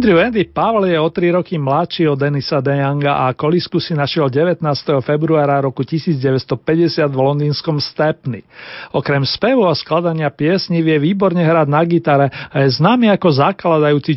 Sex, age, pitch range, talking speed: male, 40-59, 150-190 Hz, 155 wpm